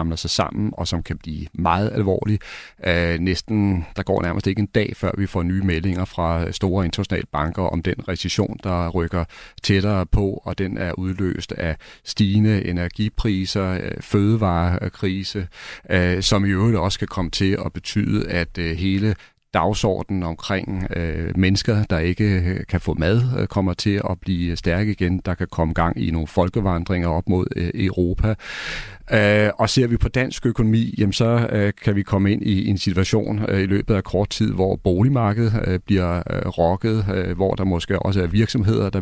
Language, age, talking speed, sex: Danish, 40-59, 160 wpm, male